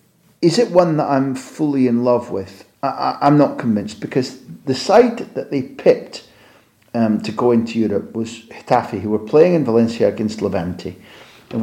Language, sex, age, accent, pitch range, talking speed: English, male, 40-59, British, 105-125 Hz, 165 wpm